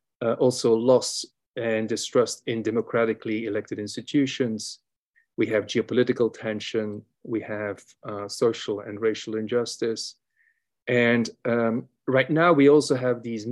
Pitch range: 110-130 Hz